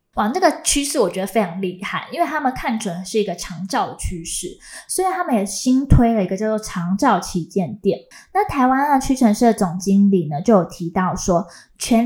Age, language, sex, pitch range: 20-39, Chinese, female, 185-250 Hz